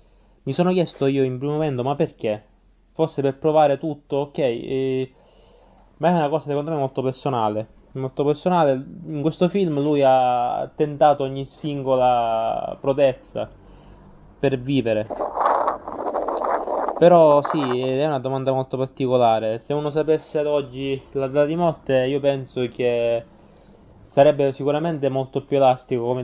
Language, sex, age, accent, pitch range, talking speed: Italian, male, 20-39, native, 125-145 Hz, 140 wpm